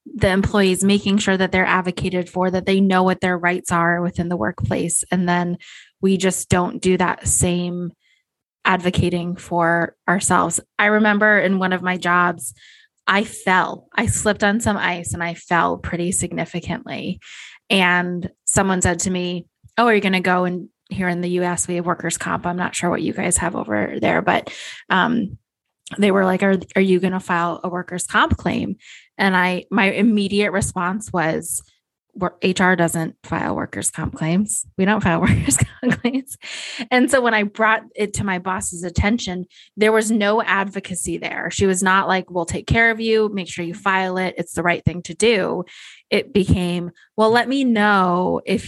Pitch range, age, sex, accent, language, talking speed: 175-205 Hz, 20-39, female, American, English, 190 wpm